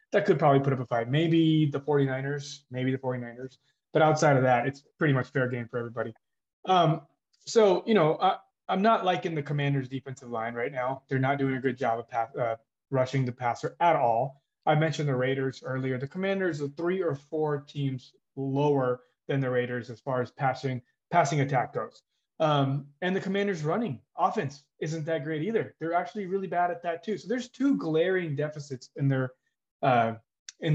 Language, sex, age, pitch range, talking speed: English, male, 20-39, 135-175 Hz, 195 wpm